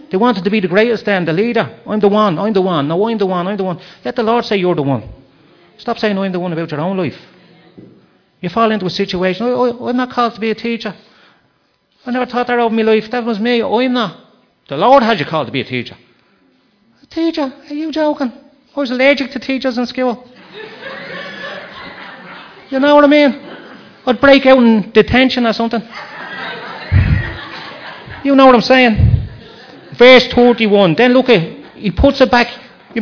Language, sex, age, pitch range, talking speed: English, male, 40-59, 185-250 Hz, 200 wpm